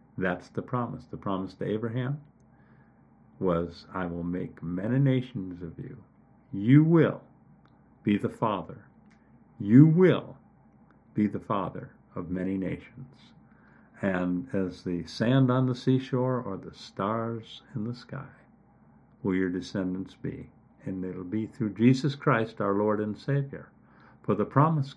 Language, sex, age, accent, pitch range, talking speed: English, male, 50-69, American, 100-145 Hz, 140 wpm